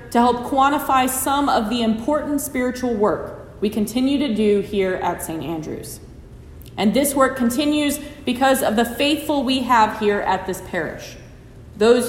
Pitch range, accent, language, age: 210-290 Hz, American, English, 30-49